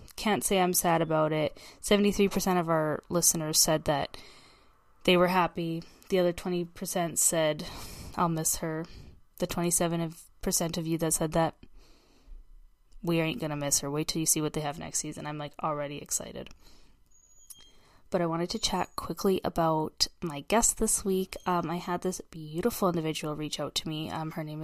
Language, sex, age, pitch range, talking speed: English, female, 10-29, 160-190 Hz, 175 wpm